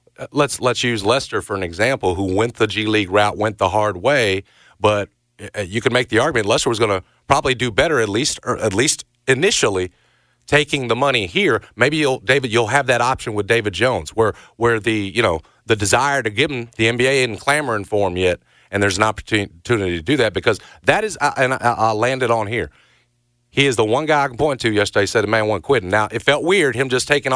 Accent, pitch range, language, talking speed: American, 105-130 Hz, English, 235 wpm